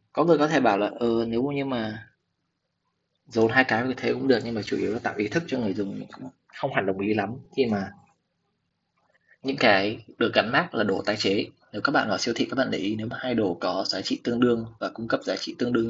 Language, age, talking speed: Vietnamese, 20-39, 265 wpm